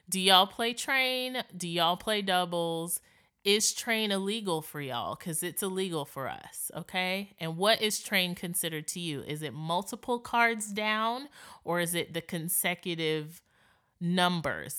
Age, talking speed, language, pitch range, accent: 20-39, 150 wpm, English, 155-200 Hz, American